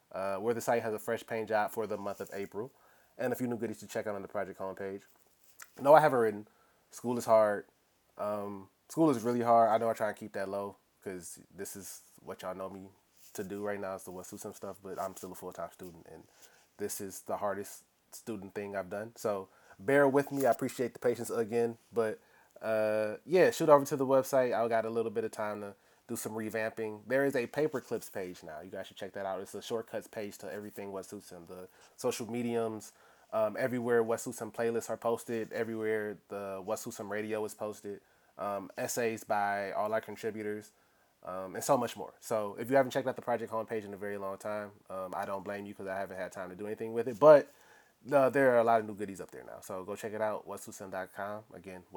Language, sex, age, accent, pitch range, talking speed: English, male, 20-39, American, 100-115 Hz, 235 wpm